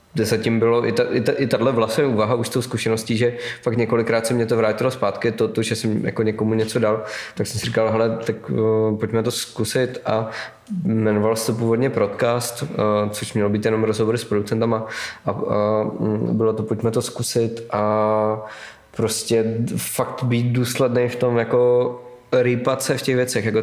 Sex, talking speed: male, 185 wpm